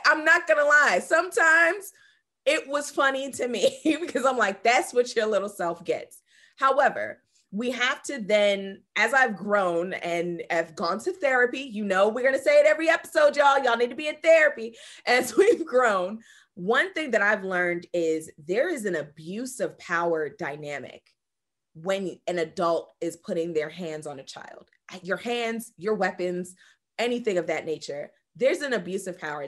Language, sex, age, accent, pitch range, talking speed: English, female, 20-39, American, 170-285 Hz, 175 wpm